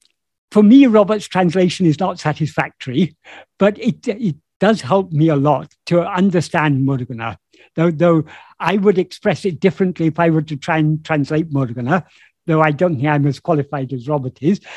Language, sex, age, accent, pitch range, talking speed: English, male, 60-79, British, 150-185 Hz, 175 wpm